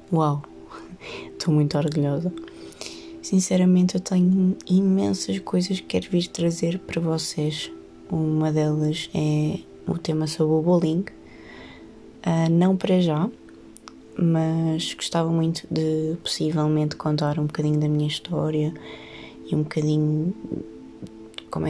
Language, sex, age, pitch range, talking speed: Portuguese, female, 20-39, 110-170 Hz, 115 wpm